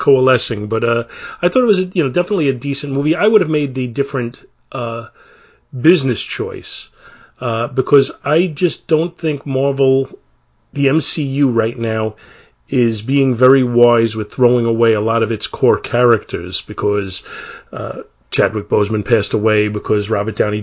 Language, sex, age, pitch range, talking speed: English, male, 40-59, 115-145 Hz, 160 wpm